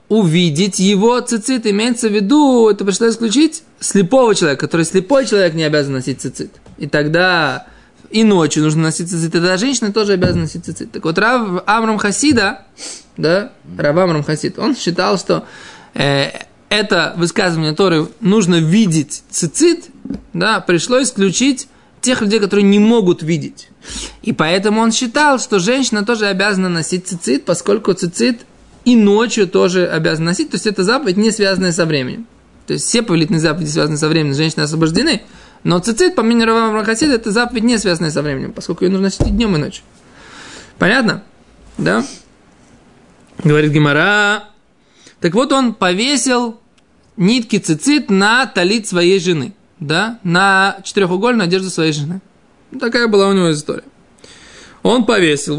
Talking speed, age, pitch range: 150 wpm, 20-39, 165-225 Hz